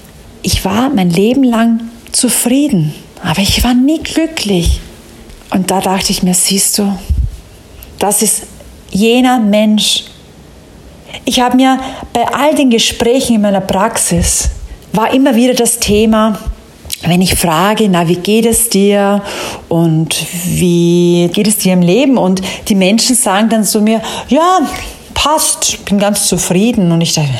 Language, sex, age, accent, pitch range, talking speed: German, female, 40-59, German, 180-255 Hz, 145 wpm